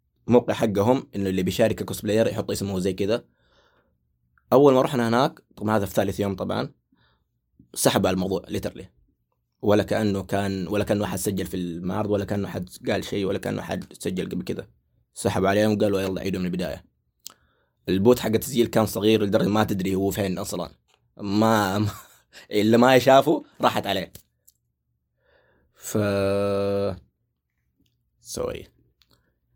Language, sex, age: Arabic, male, 20-39